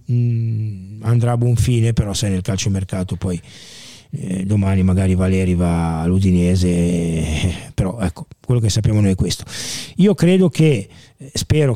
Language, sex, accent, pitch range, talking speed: Italian, male, native, 115-140 Hz, 145 wpm